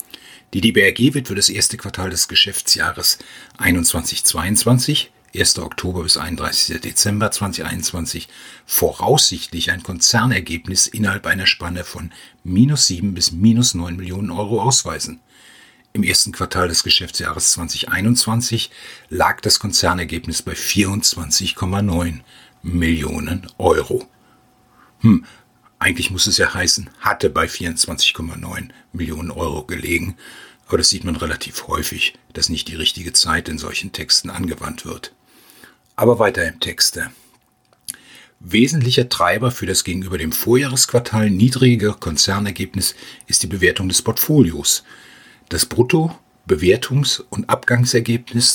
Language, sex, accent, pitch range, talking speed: German, male, German, 85-120 Hz, 115 wpm